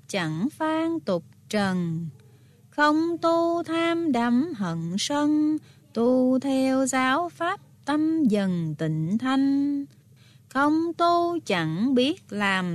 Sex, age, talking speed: female, 20-39, 110 wpm